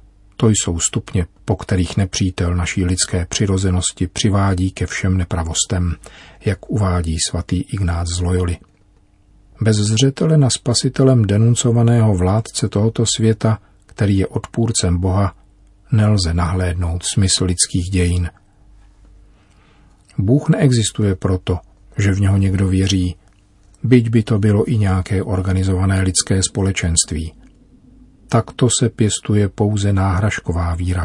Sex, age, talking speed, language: male, 40-59, 115 wpm, Czech